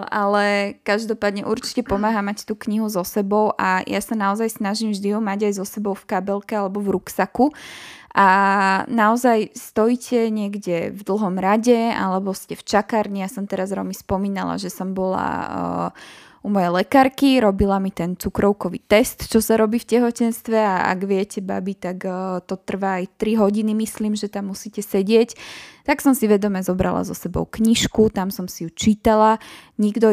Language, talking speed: Slovak, 175 wpm